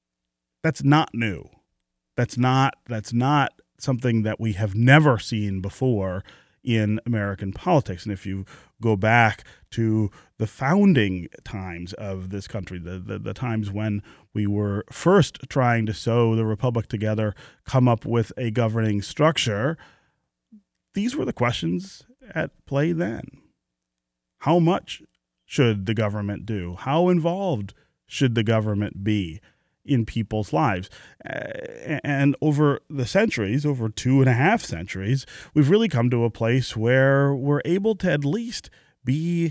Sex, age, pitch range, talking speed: male, 30-49, 100-135 Hz, 145 wpm